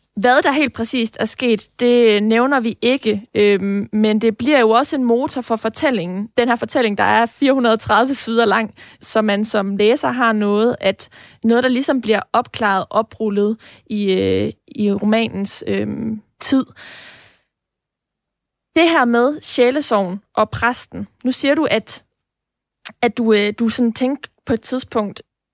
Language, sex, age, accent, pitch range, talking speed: Danish, female, 20-39, native, 215-255 Hz, 155 wpm